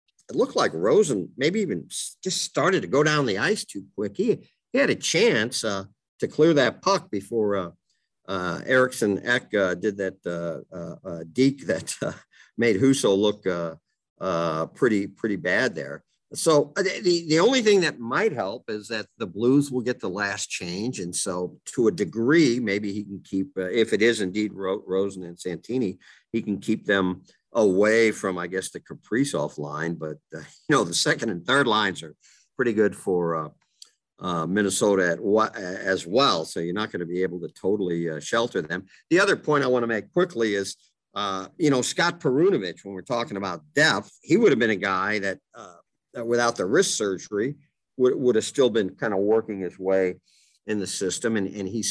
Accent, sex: American, male